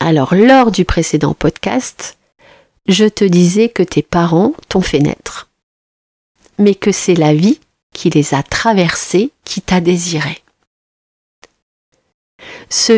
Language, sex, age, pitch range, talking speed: French, female, 40-59, 170-210 Hz, 125 wpm